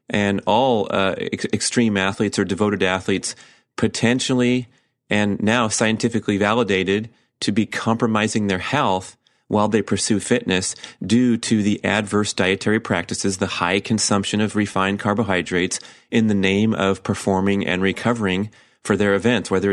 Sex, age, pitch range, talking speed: male, 30-49, 100-115 Hz, 135 wpm